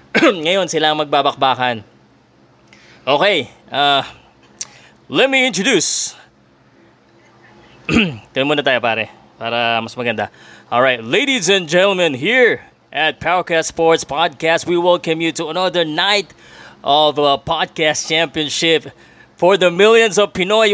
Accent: native